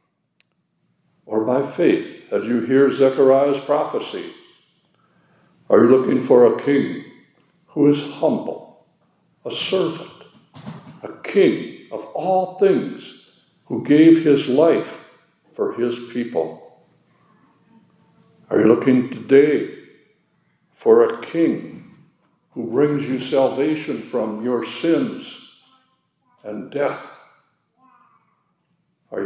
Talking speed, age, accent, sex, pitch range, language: 100 wpm, 60-79, American, male, 130-205 Hz, English